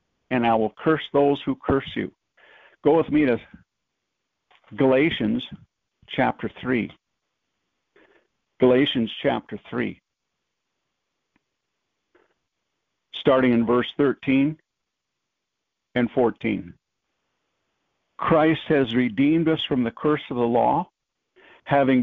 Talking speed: 95 wpm